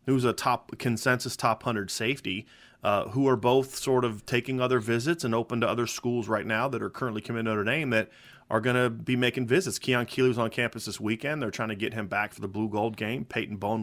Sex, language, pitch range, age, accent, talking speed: male, English, 110-130 Hz, 30-49, American, 245 wpm